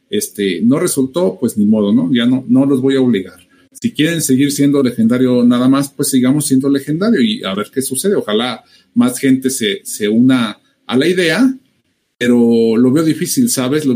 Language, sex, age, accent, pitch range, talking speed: Spanish, male, 50-69, Mexican, 125-210 Hz, 195 wpm